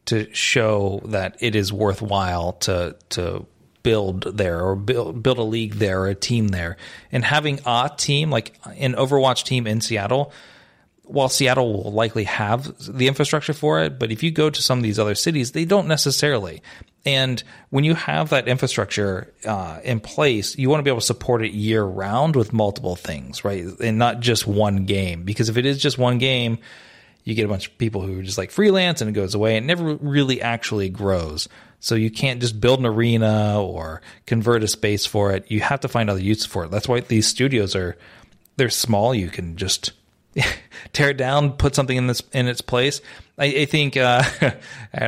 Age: 30-49